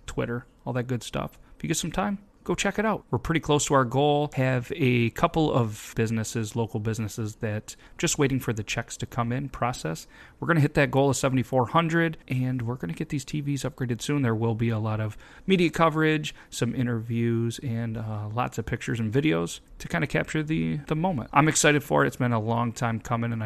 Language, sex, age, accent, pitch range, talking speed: English, male, 30-49, American, 110-130 Hz, 225 wpm